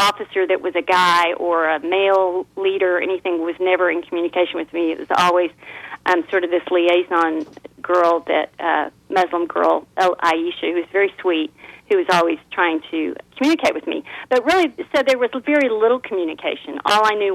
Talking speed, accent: 190 wpm, American